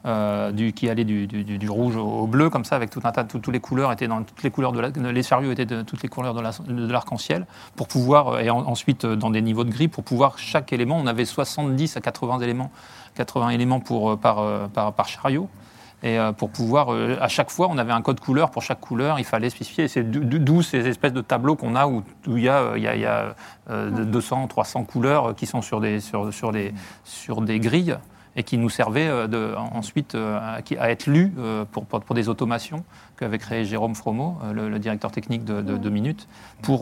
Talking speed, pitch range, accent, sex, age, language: 240 wpm, 110-130 Hz, French, male, 30-49, French